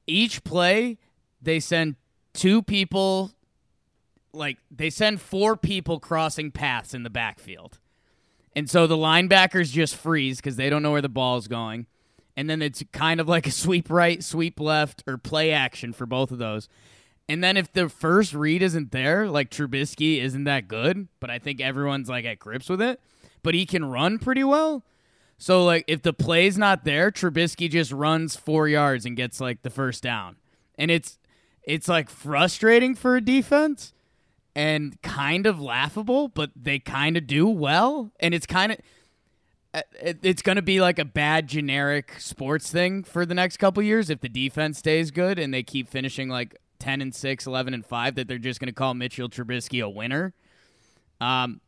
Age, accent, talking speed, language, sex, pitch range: 20-39, American, 180 wpm, English, male, 130-180 Hz